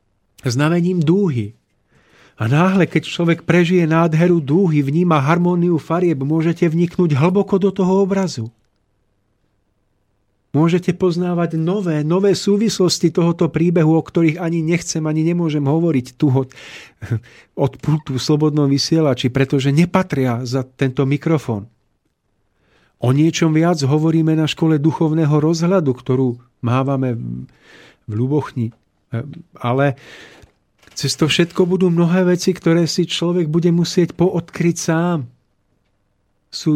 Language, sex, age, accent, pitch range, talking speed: Czech, male, 40-59, native, 130-170 Hz, 115 wpm